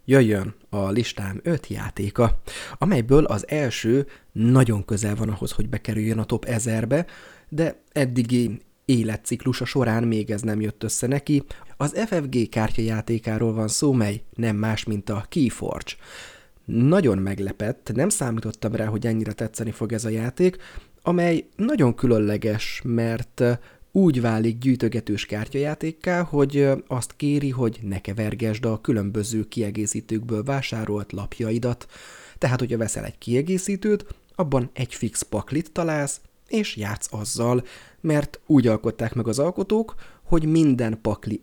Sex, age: male, 30-49